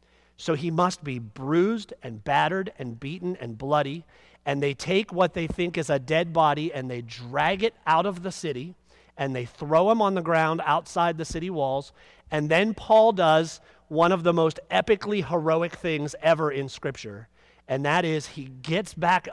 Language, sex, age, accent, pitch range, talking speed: English, male, 40-59, American, 135-185 Hz, 185 wpm